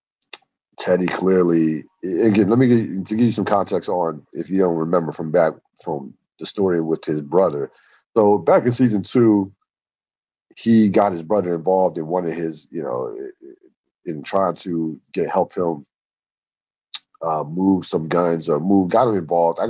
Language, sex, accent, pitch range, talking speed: English, male, American, 80-100 Hz, 175 wpm